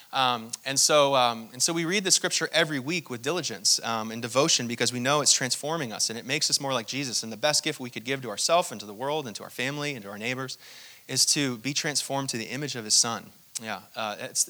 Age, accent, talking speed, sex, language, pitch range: 30-49, American, 265 wpm, male, English, 125-155 Hz